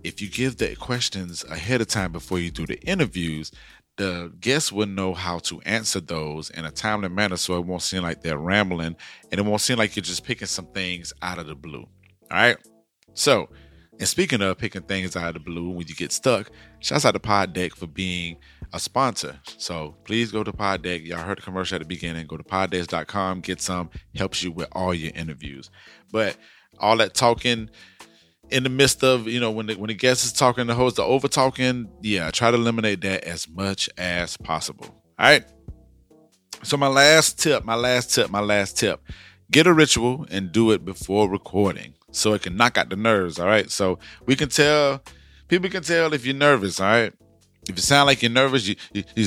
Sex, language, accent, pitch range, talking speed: male, English, American, 90-125 Hz, 210 wpm